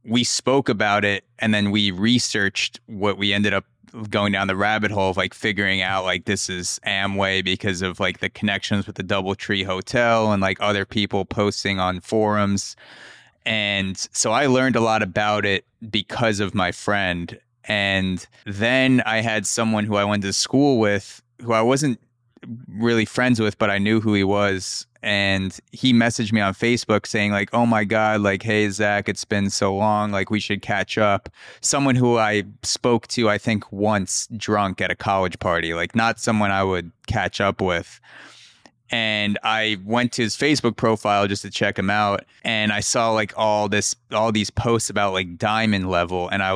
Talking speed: 190 wpm